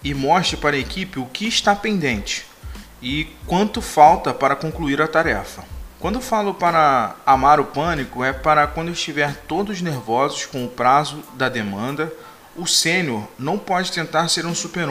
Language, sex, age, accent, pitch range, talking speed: Portuguese, male, 20-39, Brazilian, 135-170 Hz, 170 wpm